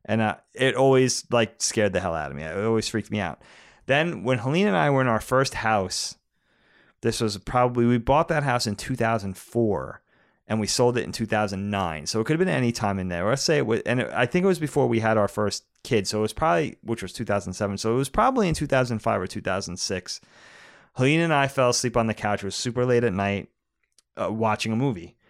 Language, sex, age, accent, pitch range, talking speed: English, male, 30-49, American, 105-130 Hz, 235 wpm